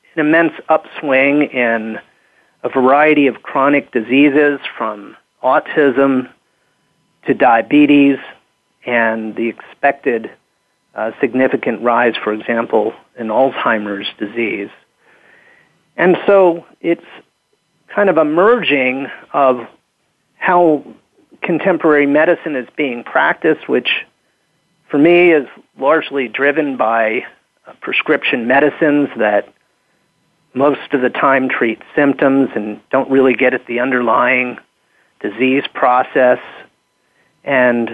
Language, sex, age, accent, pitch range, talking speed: English, male, 40-59, American, 120-145 Hz, 100 wpm